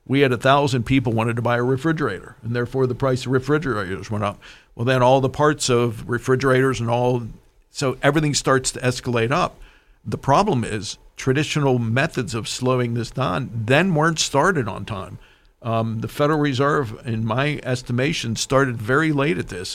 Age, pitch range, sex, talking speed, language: 50-69, 115-135 Hz, male, 175 wpm, English